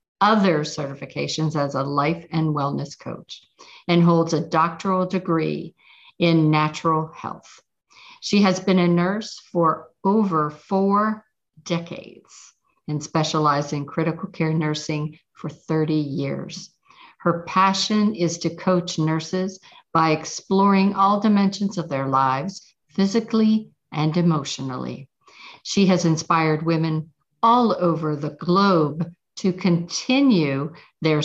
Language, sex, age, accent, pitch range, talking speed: English, female, 50-69, American, 150-190 Hz, 115 wpm